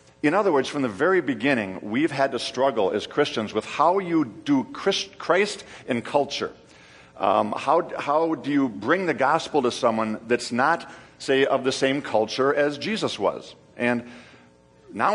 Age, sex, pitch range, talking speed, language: 50-69, male, 115-160 Hz, 165 wpm, English